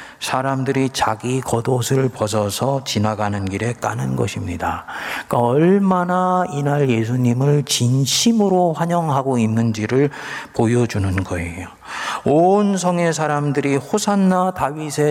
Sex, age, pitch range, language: male, 40-59, 115-150 Hz, Korean